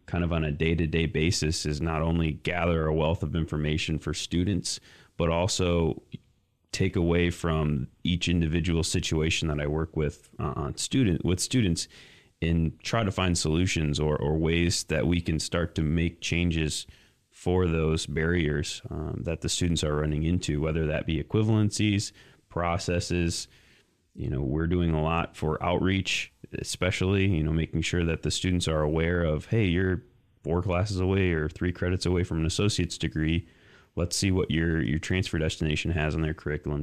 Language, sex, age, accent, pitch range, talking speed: English, male, 30-49, American, 80-90 Hz, 175 wpm